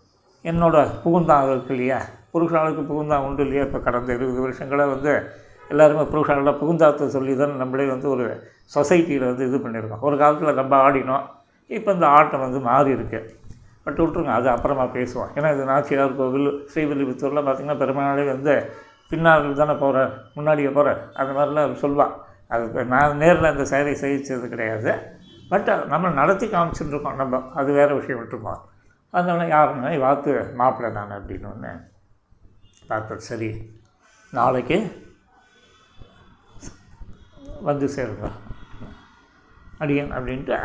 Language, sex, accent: Tamil, male, native